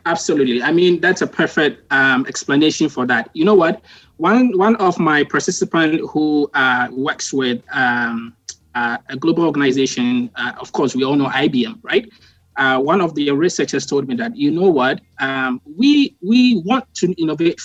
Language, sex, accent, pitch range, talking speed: English, male, Nigerian, 140-215 Hz, 175 wpm